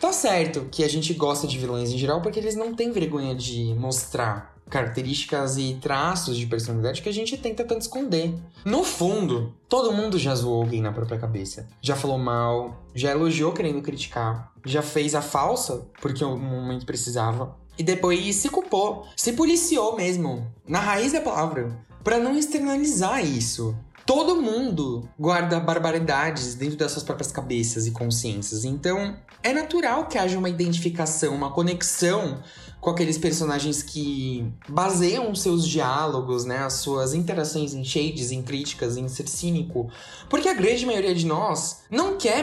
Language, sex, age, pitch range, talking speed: Portuguese, male, 20-39, 130-180 Hz, 160 wpm